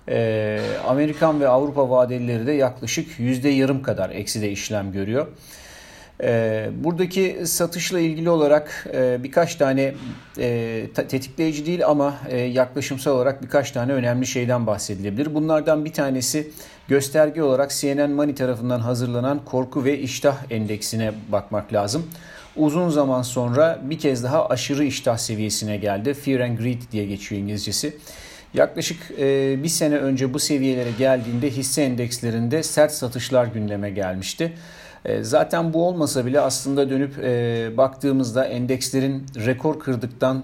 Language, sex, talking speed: Turkish, male, 120 wpm